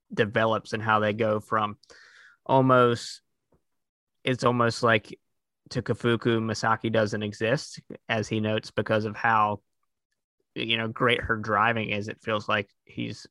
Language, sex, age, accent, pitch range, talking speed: English, male, 20-39, American, 105-115 Hz, 140 wpm